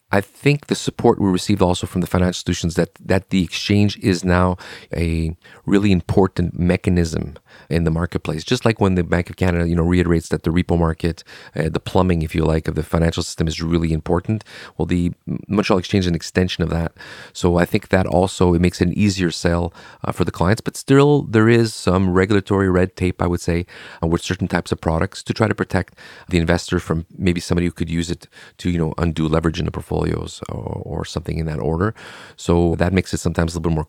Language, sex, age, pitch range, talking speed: English, male, 40-59, 85-100 Hz, 225 wpm